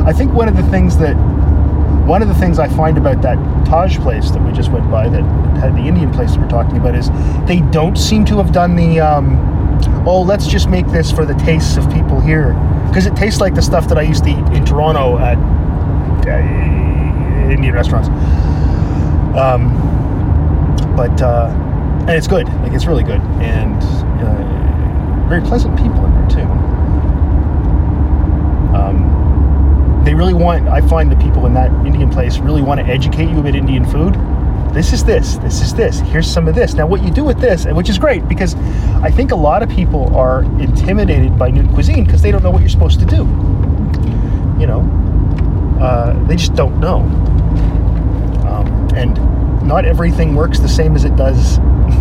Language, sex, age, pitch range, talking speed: English, male, 30-49, 75-85 Hz, 185 wpm